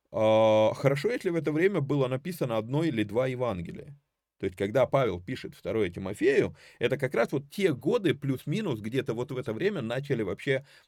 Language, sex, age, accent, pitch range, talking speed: Russian, male, 30-49, native, 110-165 Hz, 175 wpm